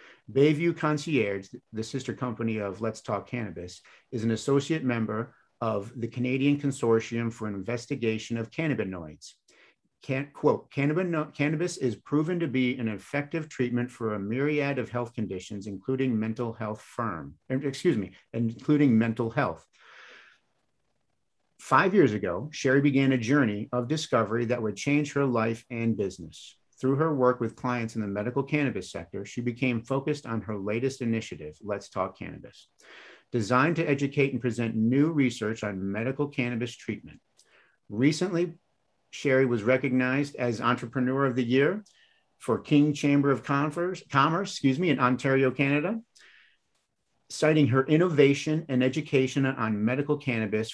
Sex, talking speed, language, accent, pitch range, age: male, 145 wpm, English, American, 115-140 Hz, 50-69